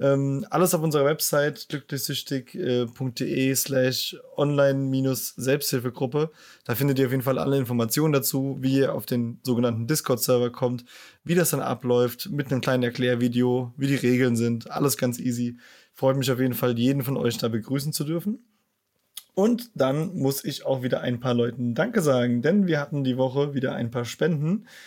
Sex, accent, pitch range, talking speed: male, German, 130-160 Hz, 165 wpm